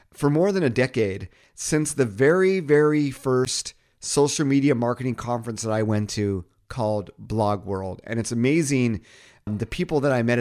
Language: English